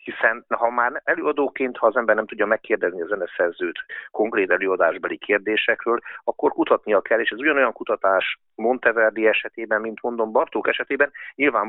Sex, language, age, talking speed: male, Hungarian, 50-69, 150 wpm